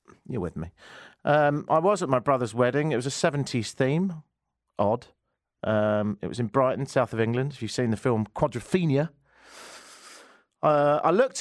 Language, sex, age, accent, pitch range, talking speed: English, male, 40-59, British, 100-155 Hz, 175 wpm